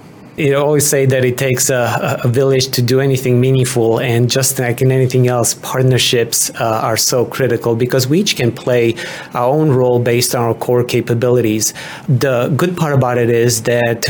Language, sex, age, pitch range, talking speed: English, male, 30-49, 115-135 Hz, 185 wpm